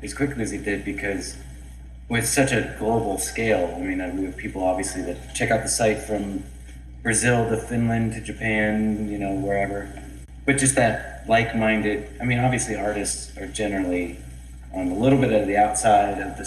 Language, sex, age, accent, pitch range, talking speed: English, male, 30-49, American, 95-125 Hz, 180 wpm